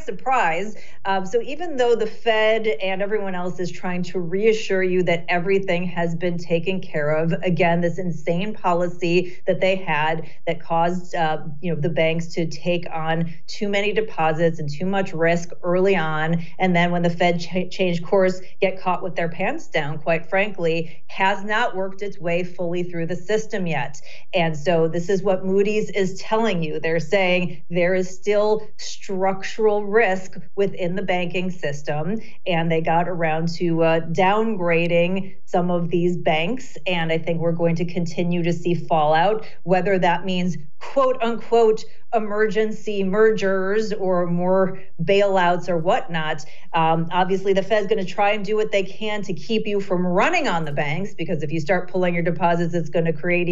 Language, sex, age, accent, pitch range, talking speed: English, female, 40-59, American, 170-200 Hz, 175 wpm